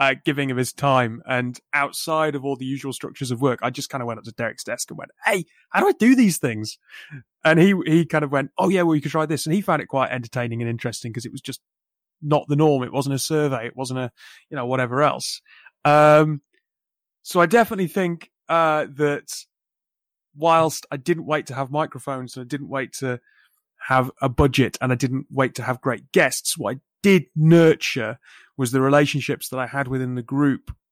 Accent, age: British, 30-49